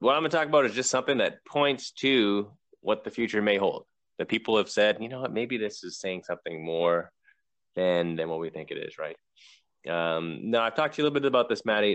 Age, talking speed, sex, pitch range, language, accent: 30-49, 250 wpm, male, 95-120 Hz, English, American